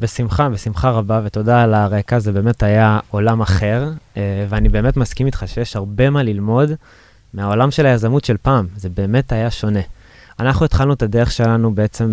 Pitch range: 105-125 Hz